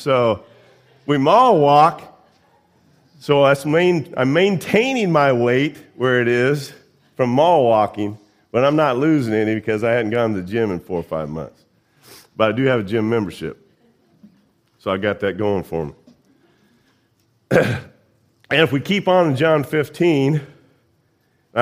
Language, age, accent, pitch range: English, 50-69, American, 120-150 Hz